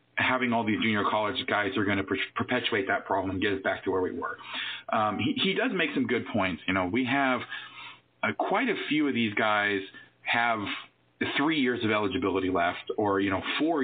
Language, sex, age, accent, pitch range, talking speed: English, male, 40-59, American, 100-125 Hz, 210 wpm